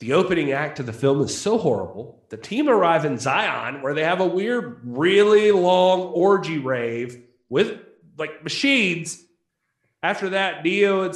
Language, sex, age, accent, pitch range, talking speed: English, male, 30-49, American, 140-220 Hz, 160 wpm